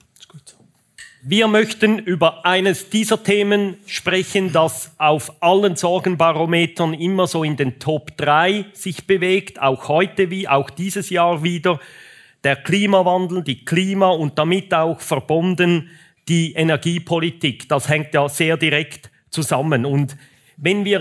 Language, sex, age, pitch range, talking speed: German, male, 40-59, 150-185 Hz, 130 wpm